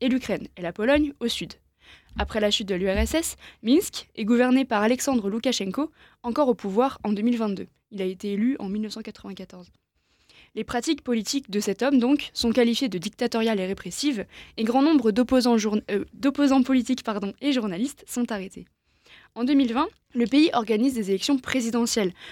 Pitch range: 210-270 Hz